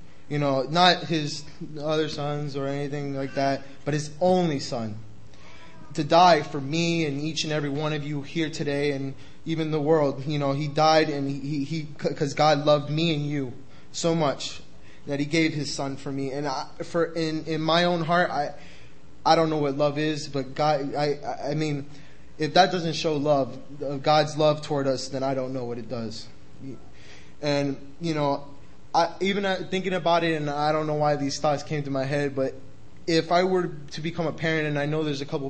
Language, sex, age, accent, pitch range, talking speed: English, male, 20-39, American, 135-155 Hz, 205 wpm